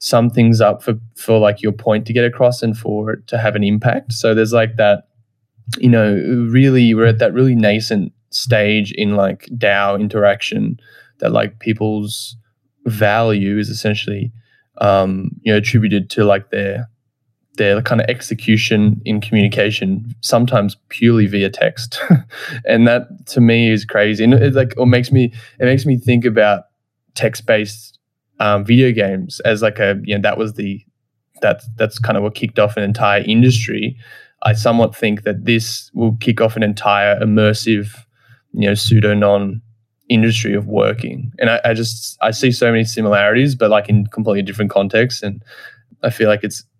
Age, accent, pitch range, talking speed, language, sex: 20-39, Australian, 105-120 Hz, 175 wpm, English, male